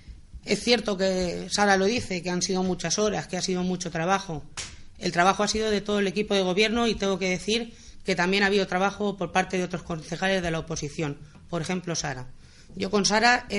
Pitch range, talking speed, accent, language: 170-200 Hz, 220 wpm, Spanish, Spanish